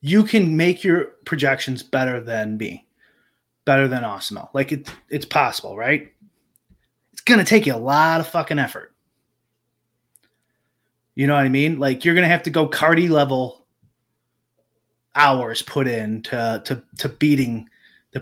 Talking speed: 150 wpm